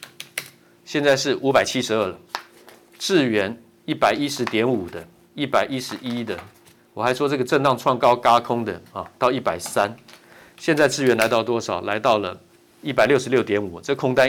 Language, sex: Chinese, male